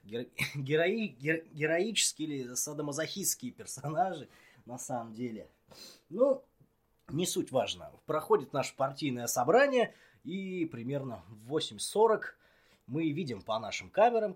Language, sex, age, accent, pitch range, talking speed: Russian, male, 20-39, native, 125-165 Hz, 100 wpm